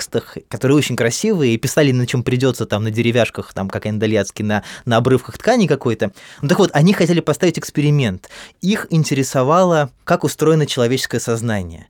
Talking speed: 170 wpm